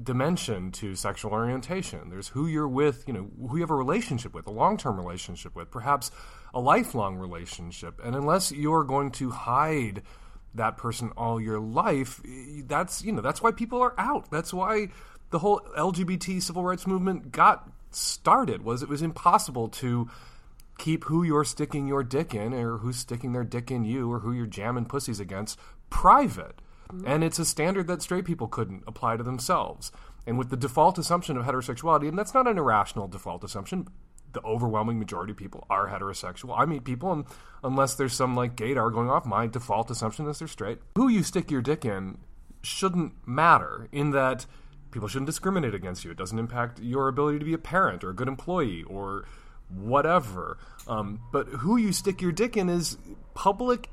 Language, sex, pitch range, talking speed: English, male, 110-165 Hz, 190 wpm